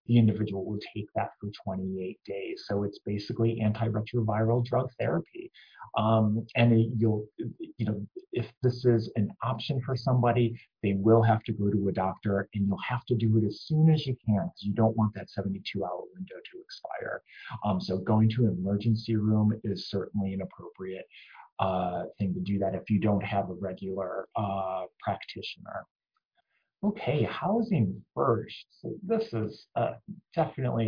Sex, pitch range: male, 105-125 Hz